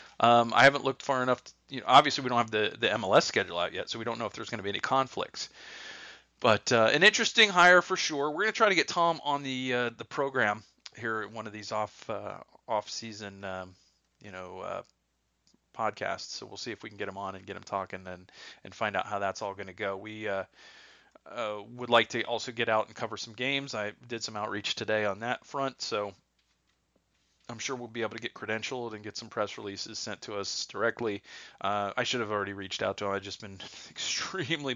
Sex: male